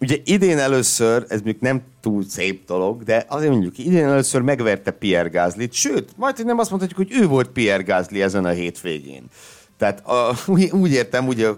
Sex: male